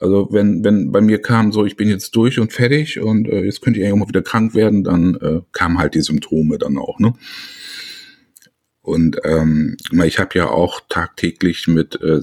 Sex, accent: male, German